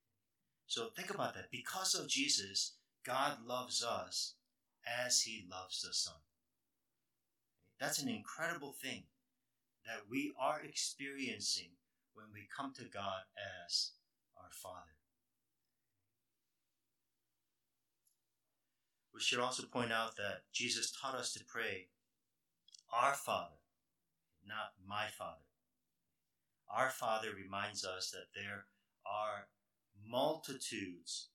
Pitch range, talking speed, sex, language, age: 100-125 Hz, 105 wpm, male, English, 50-69